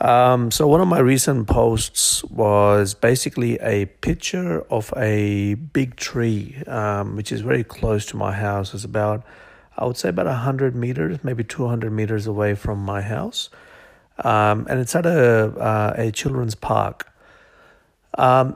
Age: 50-69